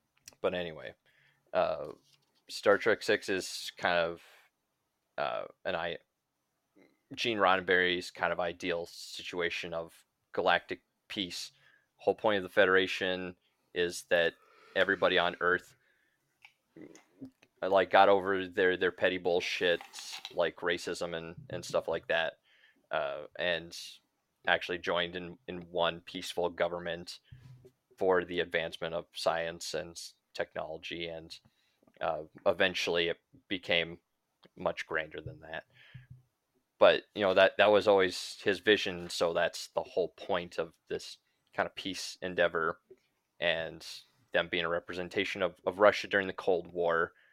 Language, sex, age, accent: English, male, 20-39, American